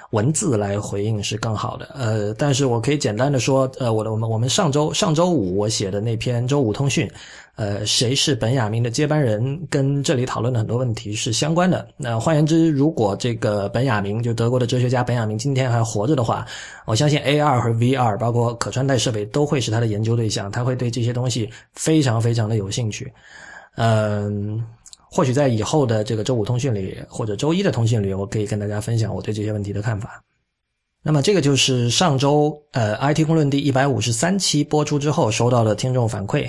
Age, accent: 20-39, native